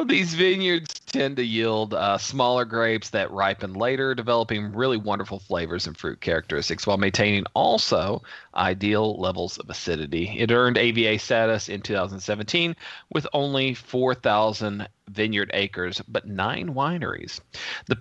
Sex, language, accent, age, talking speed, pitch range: male, English, American, 40-59, 135 wpm, 100-125 Hz